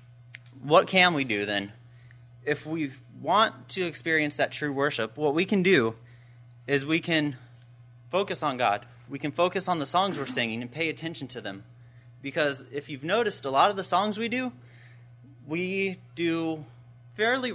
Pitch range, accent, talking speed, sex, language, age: 120-160 Hz, American, 170 wpm, male, English, 30-49